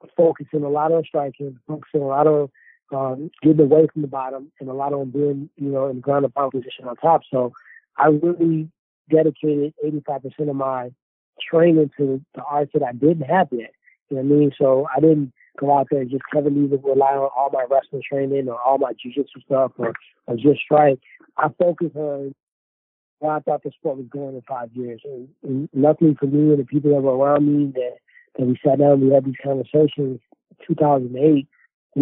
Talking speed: 210 wpm